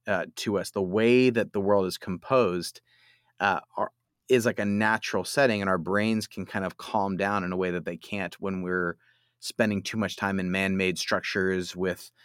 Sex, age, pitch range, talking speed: male, 30-49, 95-115 Hz, 195 wpm